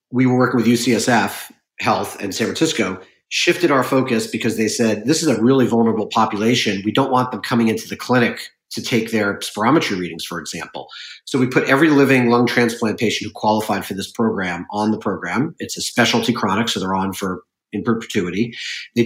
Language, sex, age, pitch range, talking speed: English, male, 40-59, 105-125 Hz, 200 wpm